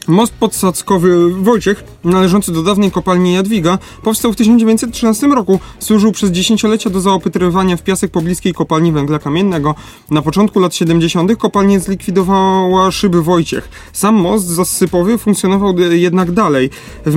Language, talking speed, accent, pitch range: Polish, 135 wpm, native, 165-200 Hz